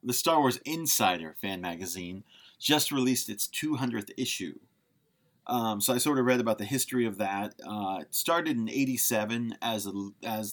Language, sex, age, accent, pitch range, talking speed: English, male, 30-49, American, 100-120 Hz, 165 wpm